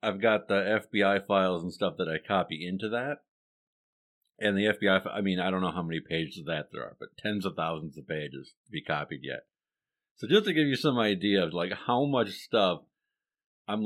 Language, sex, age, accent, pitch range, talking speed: English, male, 50-69, American, 85-115 Hz, 215 wpm